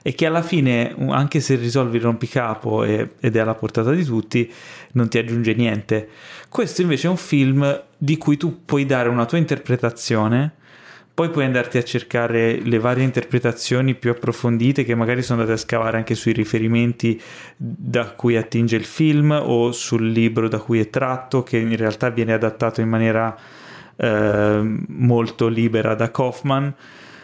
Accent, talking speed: native, 165 wpm